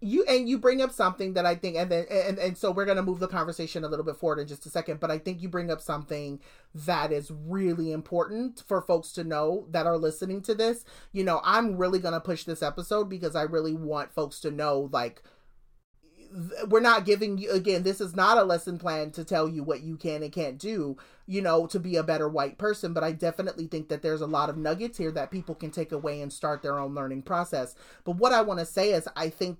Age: 30-49